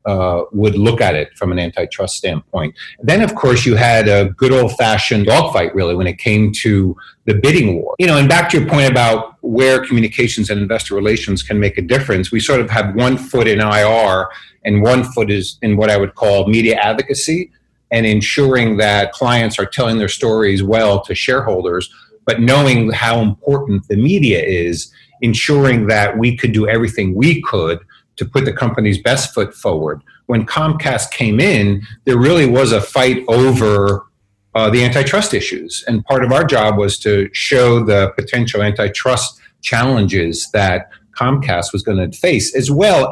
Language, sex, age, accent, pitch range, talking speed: English, male, 40-59, American, 100-130 Hz, 180 wpm